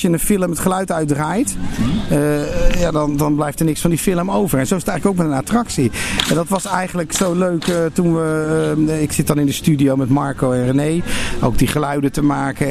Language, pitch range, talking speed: Dutch, 145-175 Hz, 245 wpm